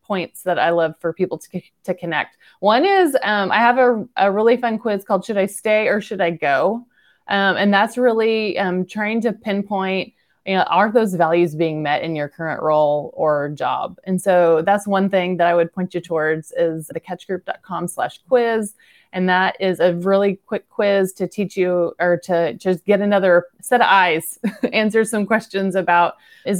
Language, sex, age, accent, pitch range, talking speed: English, female, 30-49, American, 170-205 Hz, 195 wpm